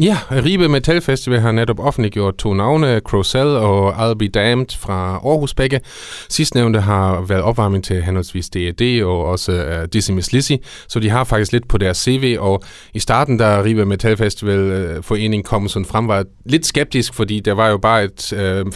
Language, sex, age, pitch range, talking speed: Danish, male, 30-49, 100-125 Hz, 185 wpm